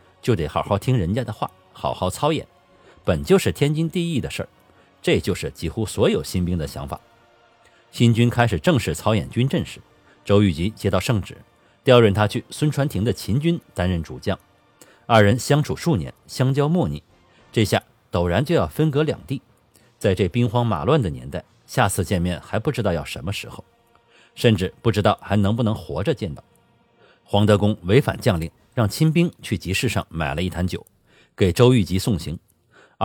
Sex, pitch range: male, 95-125 Hz